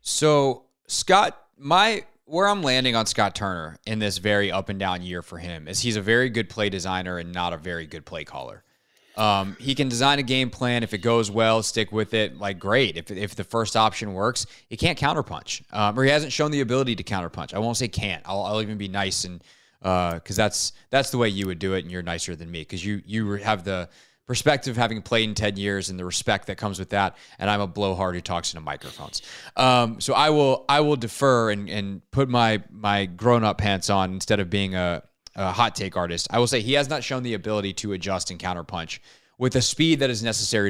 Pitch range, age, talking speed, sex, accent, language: 95-125 Hz, 20-39, 235 wpm, male, American, English